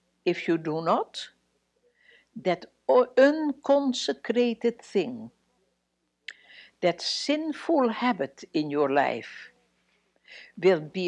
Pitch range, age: 155-245 Hz, 60-79